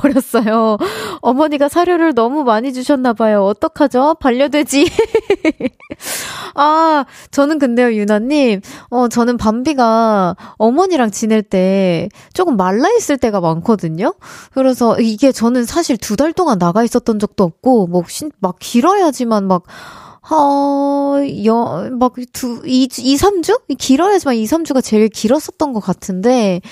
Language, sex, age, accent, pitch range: Korean, female, 20-39, native, 195-280 Hz